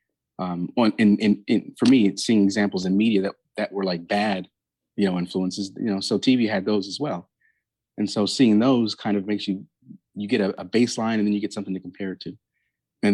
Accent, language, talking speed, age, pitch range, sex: American, English, 230 wpm, 30-49, 95-115 Hz, male